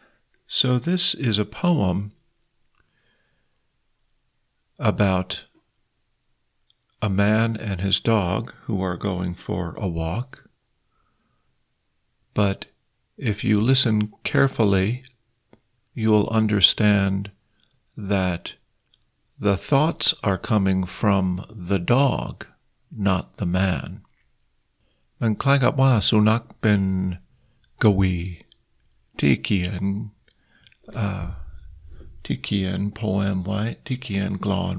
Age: 50-69